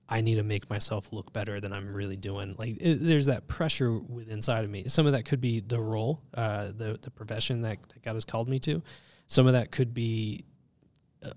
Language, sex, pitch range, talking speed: English, male, 110-130 Hz, 225 wpm